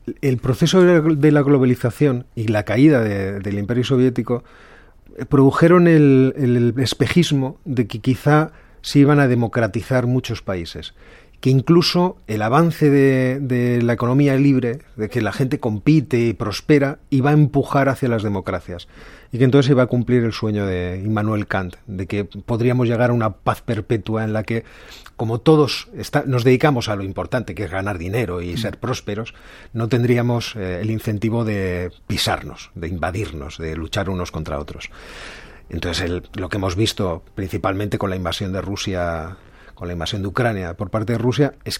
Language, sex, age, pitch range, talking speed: Spanish, male, 40-59, 100-130 Hz, 170 wpm